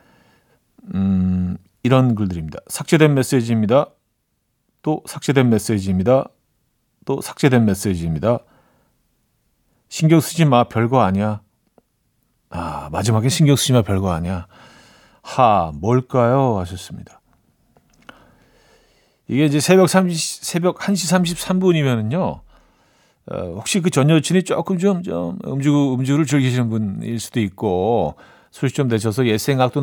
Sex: male